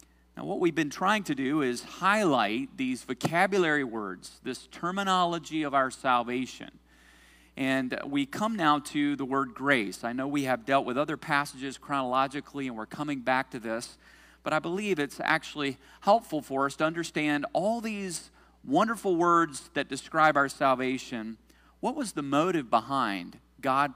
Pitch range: 125-160 Hz